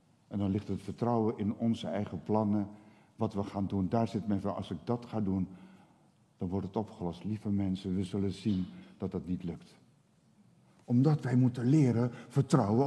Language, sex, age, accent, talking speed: Dutch, male, 60-79, Dutch, 185 wpm